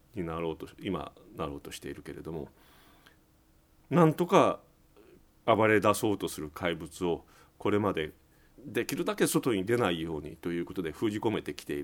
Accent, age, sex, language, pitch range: native, 40-59, male, Japanese, 95-155 Hz